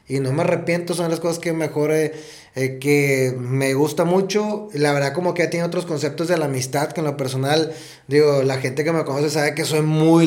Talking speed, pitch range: 235 wpm, 130-155 Hz